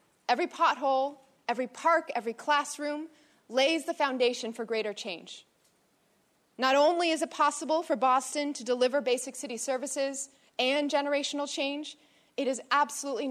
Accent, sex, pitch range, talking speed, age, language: American, female, 240-295 Hz, 135 wpm, 20-39, English